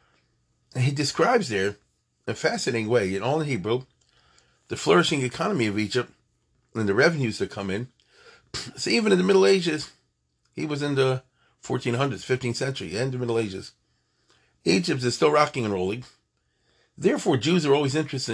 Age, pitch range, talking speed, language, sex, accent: 40-59, 120-155 Hz, 185 wpm, English, male, American